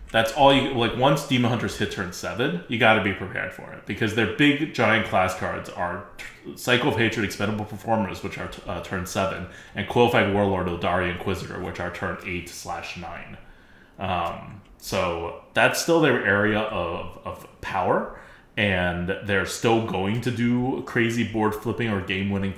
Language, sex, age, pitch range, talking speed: English, male, 20-39, 95-120 Hz, 175 wpm